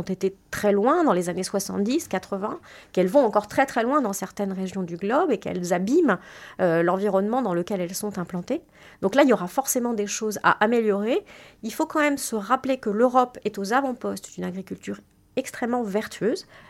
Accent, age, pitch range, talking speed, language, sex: French, 40-59, 195-255 Hz, 195 wpm, French, female